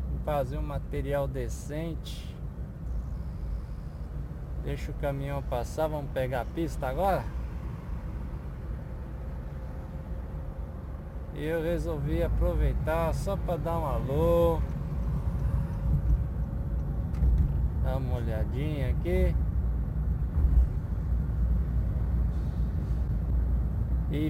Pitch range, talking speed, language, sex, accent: 65-80 Hz, 65 wpm, Portuguese, male, Brazilian